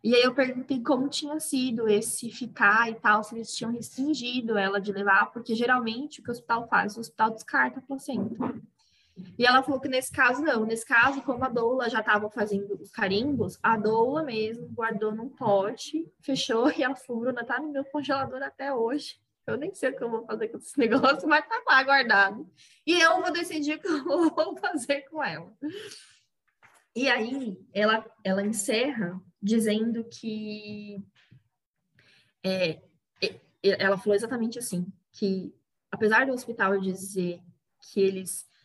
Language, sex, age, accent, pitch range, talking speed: Portuguese, female, 10-29, Brazilian, 200-265 Hz, 170 wpm